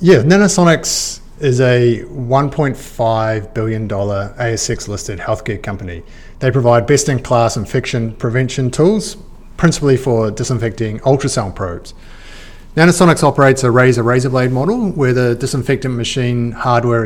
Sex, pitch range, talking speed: male, 115-140 Hz, 110 wpm